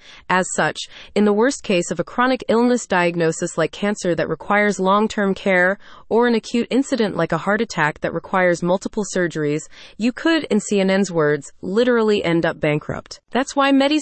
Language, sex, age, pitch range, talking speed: English, female, 30-49, 170-235 Hz, 175 wpm